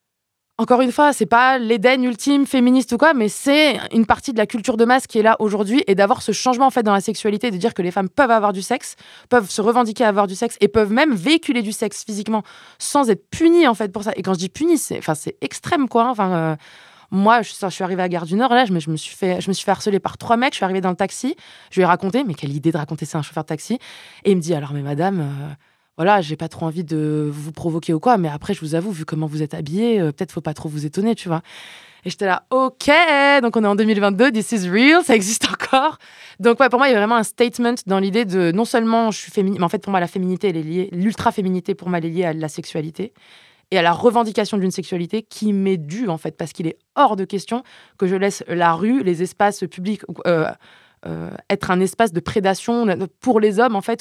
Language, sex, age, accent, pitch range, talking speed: French, female, 20-39, French, 180-235 Hz, 270 wpm